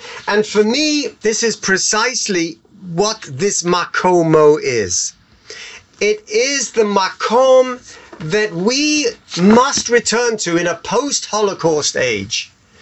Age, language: 40-59, English